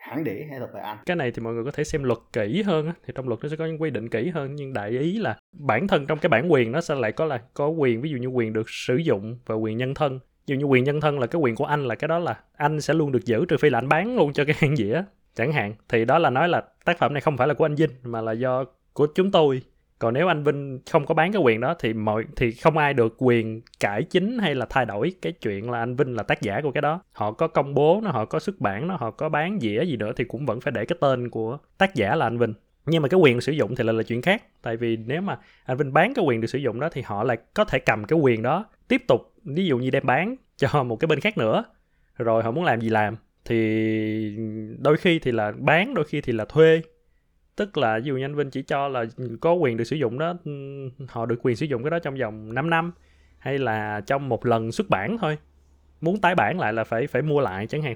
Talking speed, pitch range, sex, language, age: 280 wpm, 115-155 Hz, male, Vietnamese, 20-39